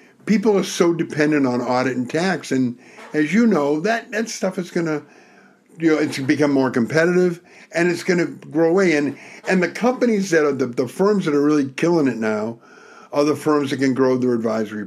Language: English